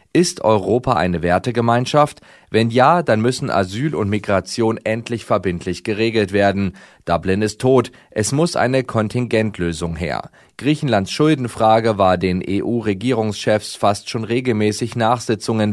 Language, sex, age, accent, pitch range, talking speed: German, male, 30-49, German, 100-125 Hz, 120 wpm